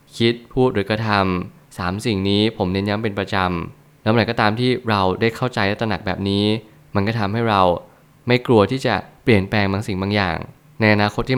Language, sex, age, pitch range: Thai, male, 20-39, 100-120 Hz